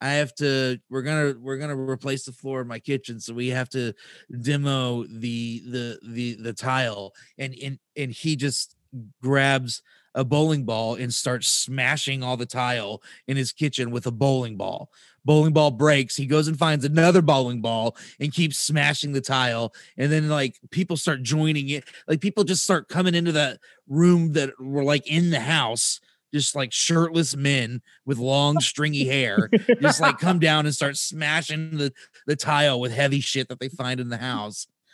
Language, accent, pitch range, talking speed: English, American, 125-155 Hz, 190 wpm